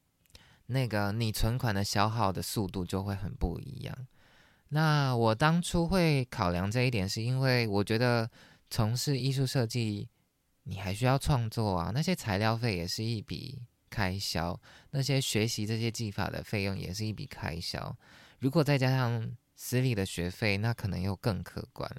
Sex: male